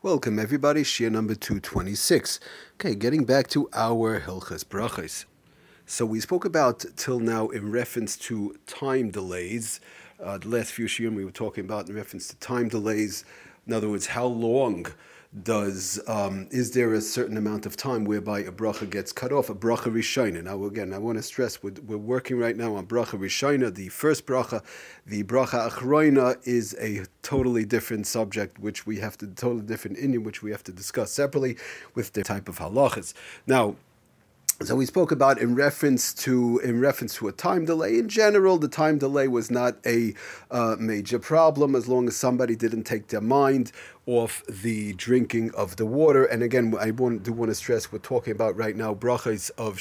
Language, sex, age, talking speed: English, male, 40-59, 190 wpm